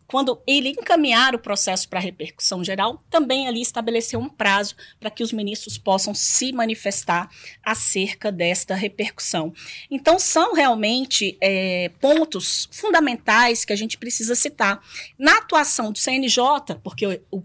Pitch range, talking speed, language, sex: 190-240 Hz, 140 wpm, Portuguese, female